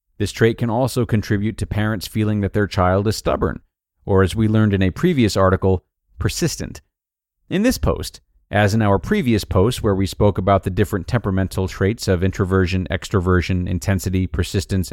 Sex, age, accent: male, 40-59, American